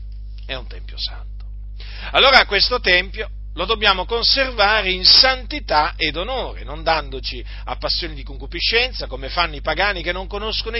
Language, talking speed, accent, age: Italian, 150 wpm, native, 40-59